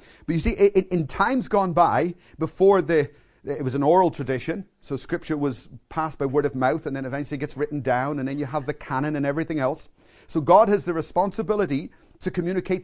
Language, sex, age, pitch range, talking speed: English, male, 40-59, 155-200 Hz, 210 wpm